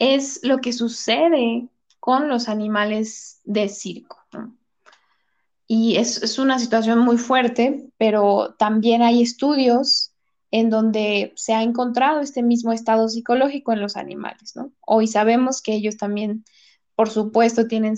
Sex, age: female, 10-29